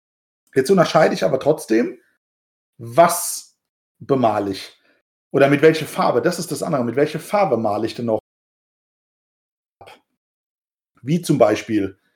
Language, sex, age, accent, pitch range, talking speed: German, male, 40-59, German, 120-160 Hz, 130 wpm